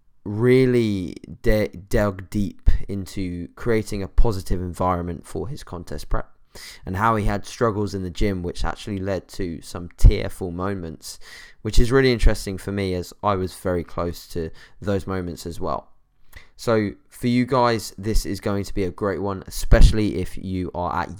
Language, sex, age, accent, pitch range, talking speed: English, male, 20-39, British, 90-110 Hz, 170 wpm